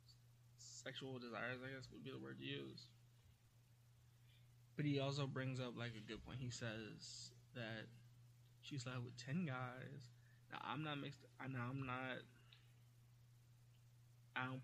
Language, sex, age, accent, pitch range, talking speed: English, male, 20-39, American, 120-130 Hz, 150 wpm